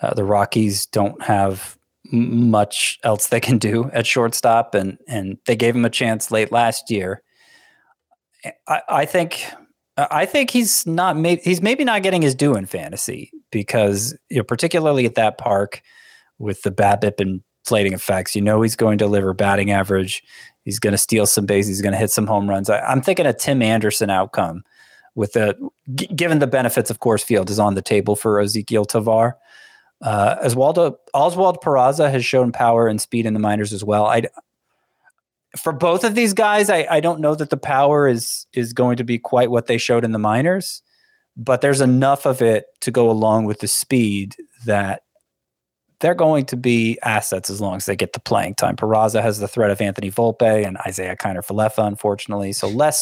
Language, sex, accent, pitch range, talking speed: English, male, American, 105-135 Hz, 195 wpm